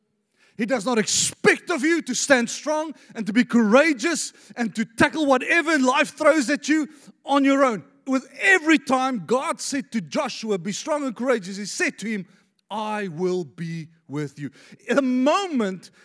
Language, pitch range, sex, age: English, 195-275 Hz, male, 40-59